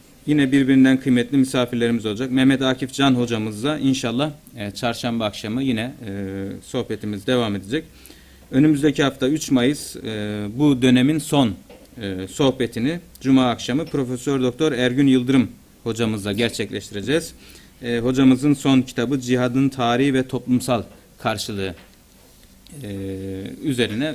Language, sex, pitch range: Turkish, male, 110-135 Hz